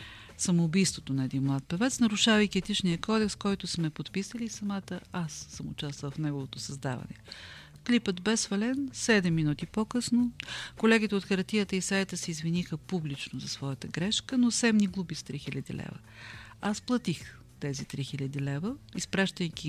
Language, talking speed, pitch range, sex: Bulgarian, 145 wpm, 145-195 Hz, female